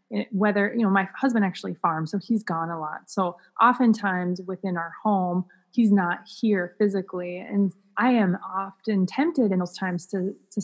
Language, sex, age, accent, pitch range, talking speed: English, female, 20-39, American, 180-225 Hz, 175 wpm